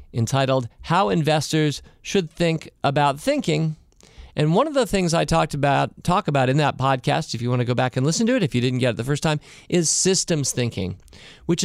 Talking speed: 215 wpm